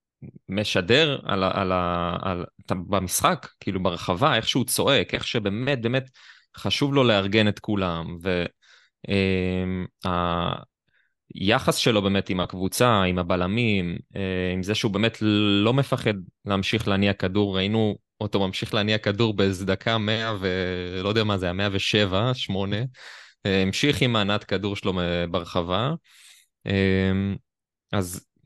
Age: 20-39